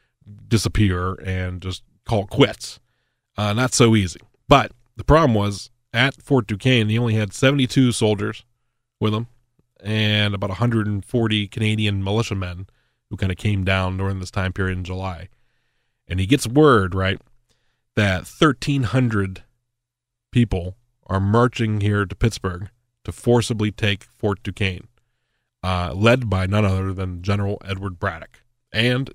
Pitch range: 100-125 Hz